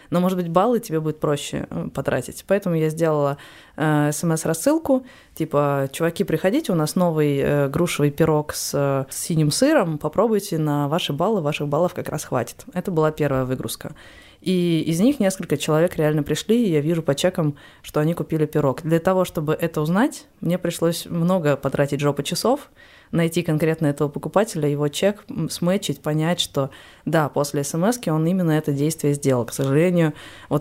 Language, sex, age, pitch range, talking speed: Russian, female, 20-39, 150-180 Hz, 165 wpm